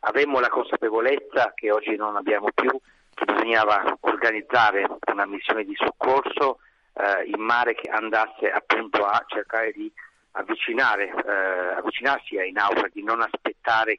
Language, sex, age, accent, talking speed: Italian, male, 50-69, native, 135 wpm